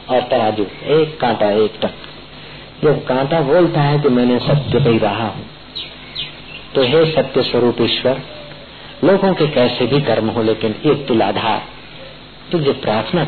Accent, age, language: native, 50-69, Hindi